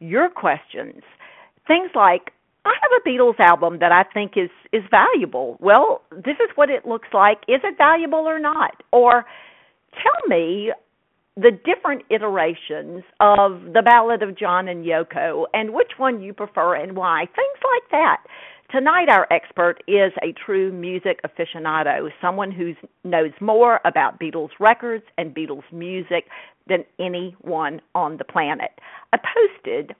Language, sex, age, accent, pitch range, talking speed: English, female, 50-69, American, 175-265 Hz, 150 wpm